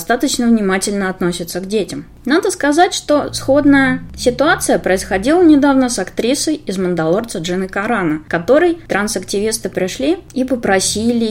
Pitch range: 175-245 Hz